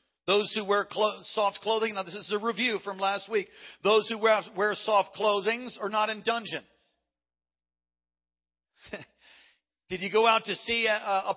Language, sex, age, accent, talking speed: English, male, 50-69, American, 170 wpm